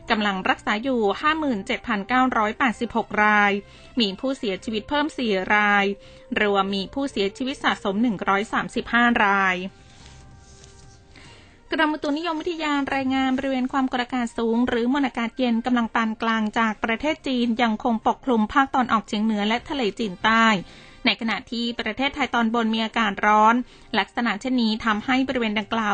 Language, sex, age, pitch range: Thai, female, 20-39, 210-255 Hz